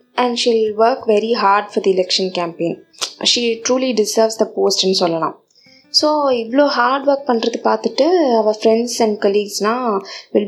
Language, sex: Tamil, female